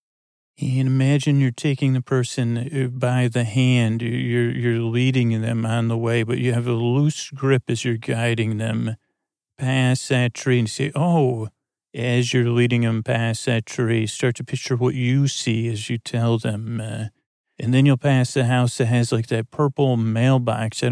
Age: 40-59